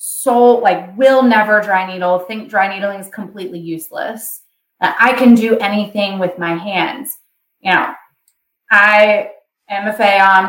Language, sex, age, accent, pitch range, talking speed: English, female, 20-39, American, 185-250 Hz, 145 wpm